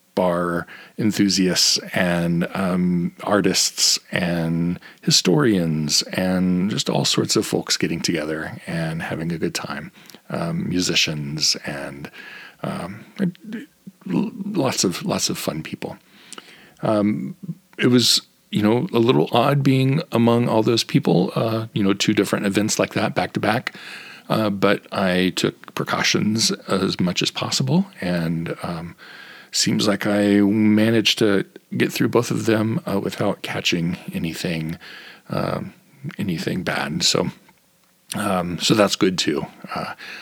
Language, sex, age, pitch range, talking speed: English, male, 40-59, 85-115 Hz, 135 wpm